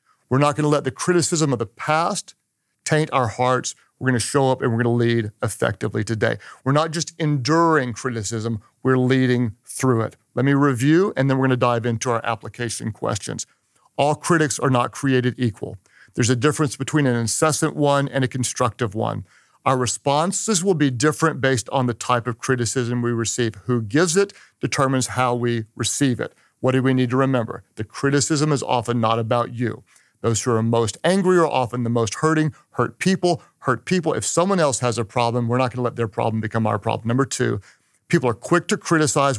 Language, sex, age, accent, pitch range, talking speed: English, male, 50-69, American, 120-145 Hz, 200 wpm